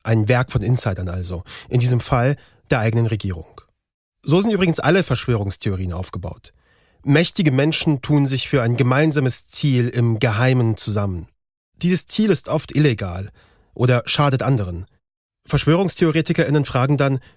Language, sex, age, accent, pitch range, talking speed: German, male, 40-59, German, 105-145 Hz, 135 wpm